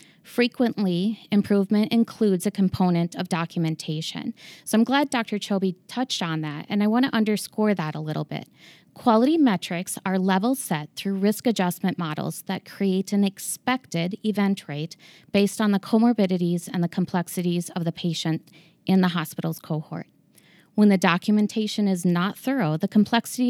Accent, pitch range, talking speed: American, 170-210 Hz, 155 wpm